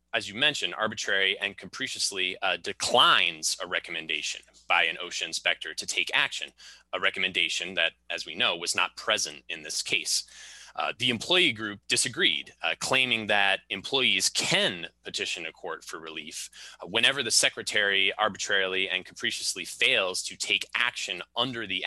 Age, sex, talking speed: 20-39, male, 155 wpm